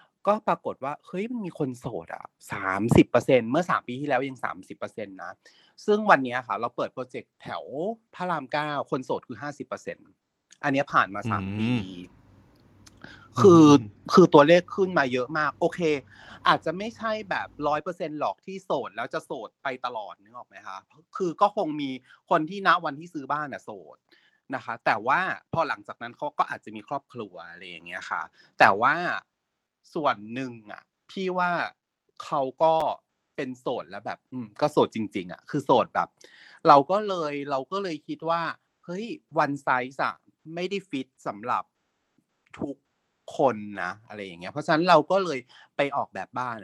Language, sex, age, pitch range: Thai, male, 30-49, 125-170 Hz